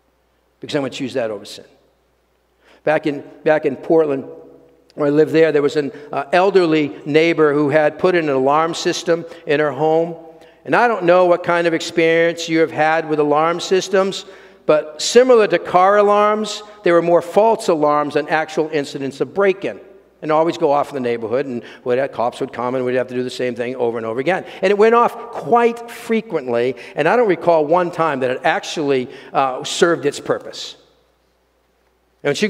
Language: English